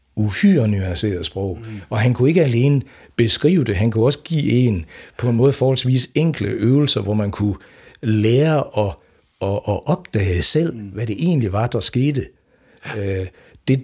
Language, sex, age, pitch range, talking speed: Danish, male, 60-79, 100-130 Hz, 155 wpm